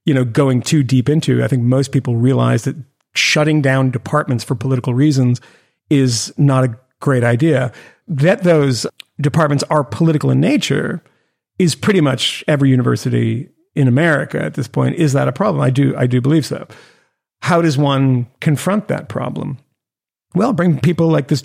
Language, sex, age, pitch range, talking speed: English, male, 40-59, 130-170 Hz, 170 wpm